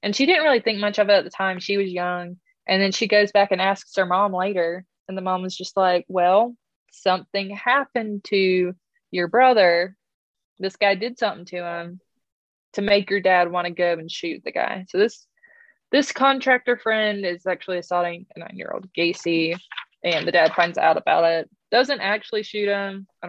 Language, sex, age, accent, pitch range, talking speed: English, female, 20-39, American, 180-230 Hz, 195 wpm